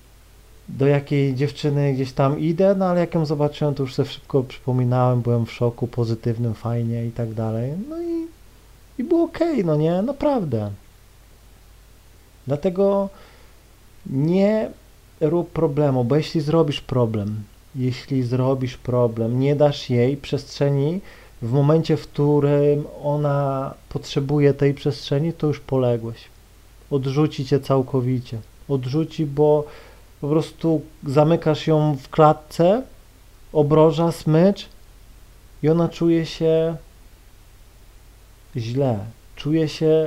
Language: Polish